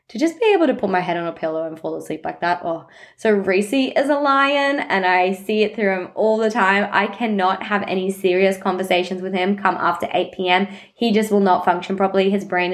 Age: 20-39